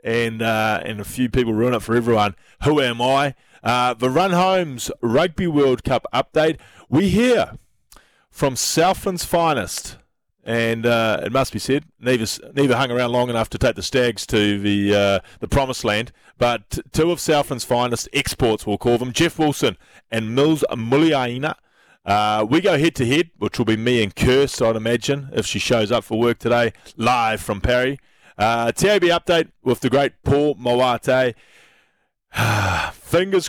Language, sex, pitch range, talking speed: English, male, 115-140 Hz, 165 wpm